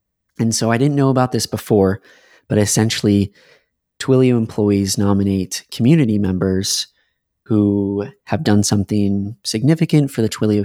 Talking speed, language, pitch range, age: 130 wpm, English, 100-115 Hz, 20-39